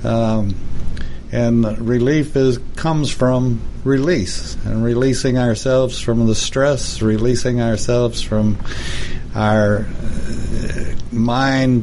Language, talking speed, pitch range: English, 95 wpm, 105-125 Hz